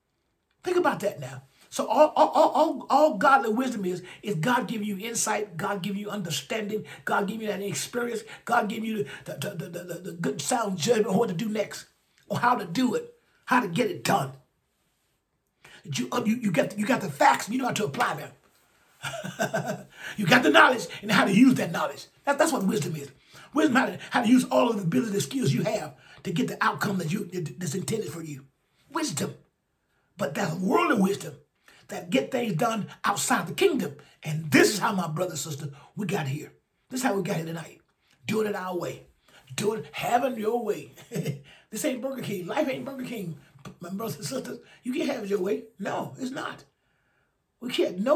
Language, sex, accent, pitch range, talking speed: English, male, American, 175-245 Hz, 210 wpm